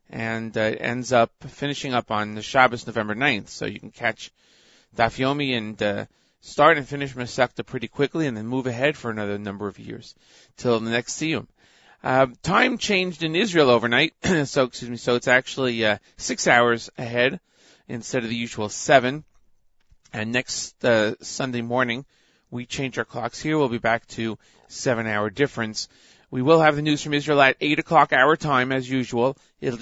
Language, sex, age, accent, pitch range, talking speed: English, male, 30-49, American, 115-140 Hz, 185 wpm